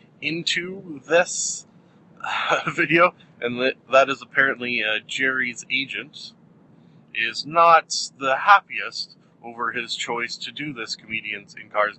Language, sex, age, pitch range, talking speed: English, male, 30-49, 125-180 Hz, 125 wpm